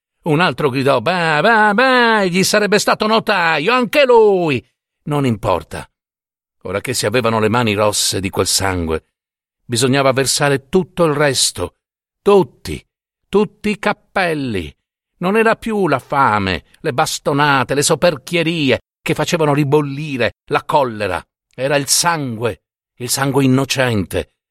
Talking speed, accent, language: 130 wpm, native, Italian